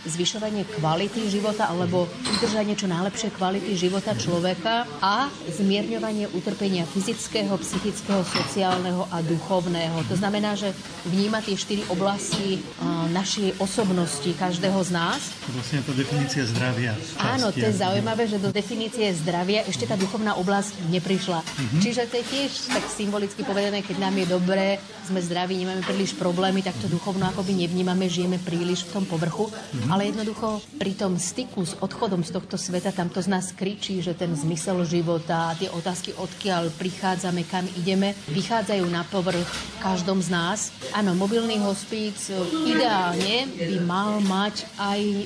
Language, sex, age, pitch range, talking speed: Slovak, female, 30-49, 180-205 Hz, 145 wpm